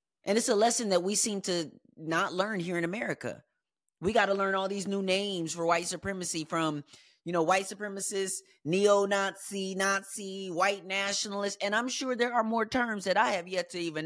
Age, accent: 30-49, American